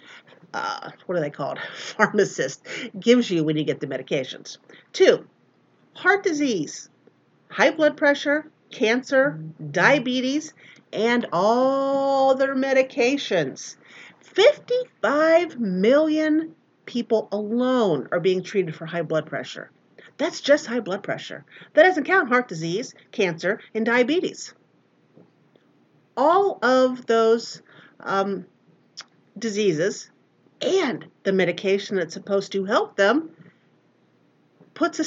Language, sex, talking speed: English, female, 110 wpm